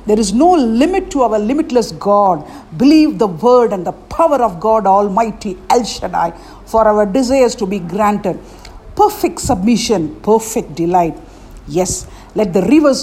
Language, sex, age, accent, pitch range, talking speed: English, female, 50-69, Indian, 200-275 Hz, 150 wpm